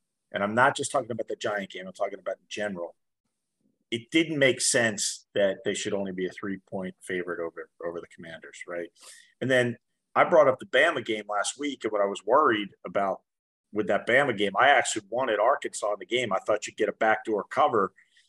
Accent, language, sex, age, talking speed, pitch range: American, English, male, 40-59, 215 wpm, 105-145 Hz